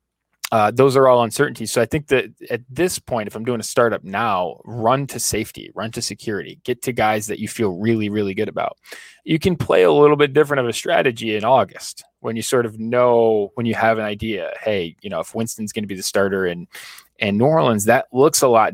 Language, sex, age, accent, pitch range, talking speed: English, male, 20-39, American, 105-130 Hz, 235 wpm